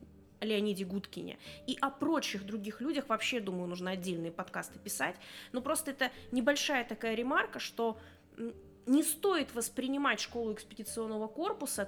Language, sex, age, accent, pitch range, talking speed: Russian, female, 20-39, native, 205-280 Hz, 130 wpm